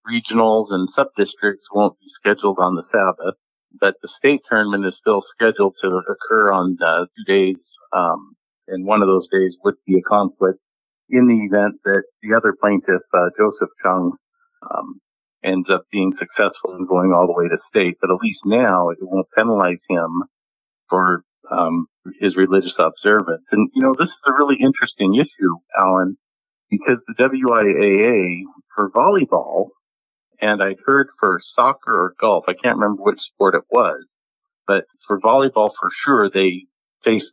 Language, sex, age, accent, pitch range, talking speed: English, male, 50-69, American, 95-135 Hz, 165 wpm